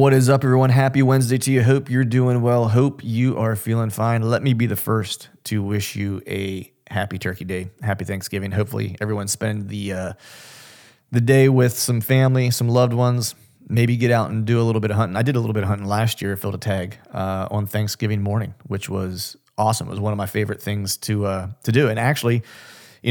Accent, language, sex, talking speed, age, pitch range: American, English, male, 225 wpm, 30-49, 100-120 Hz